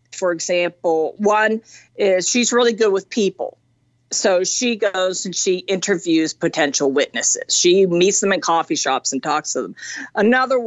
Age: 50-69